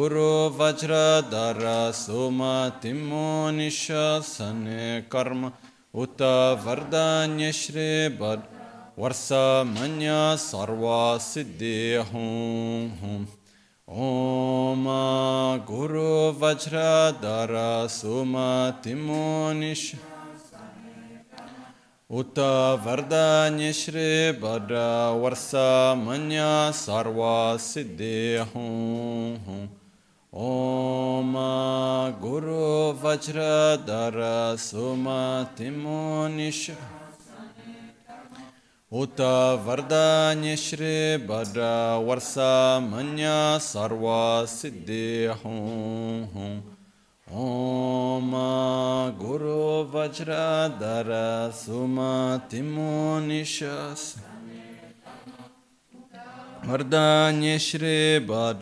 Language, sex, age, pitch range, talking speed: Italian, male, 40-59, 115-155 Hz, 50 wpm